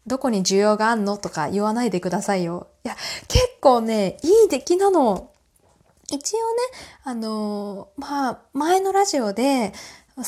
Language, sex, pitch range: Japanese, female, 200-330 Hz